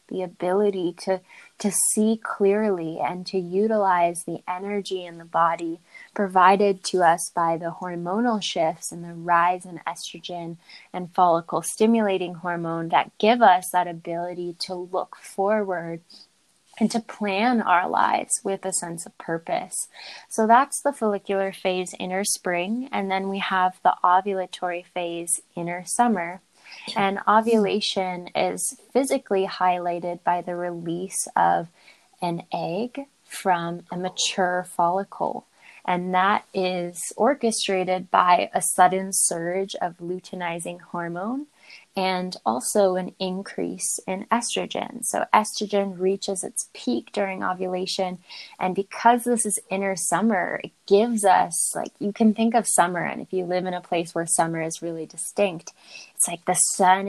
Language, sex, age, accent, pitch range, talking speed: English, female, 10-29, American, 175-205 Hz, 140 wpm